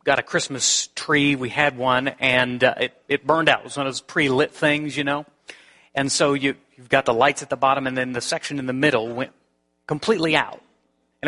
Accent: American